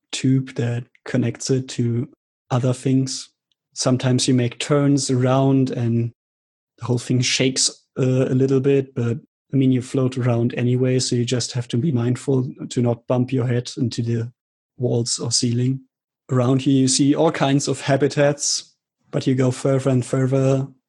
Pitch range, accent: 125-140 Hz, German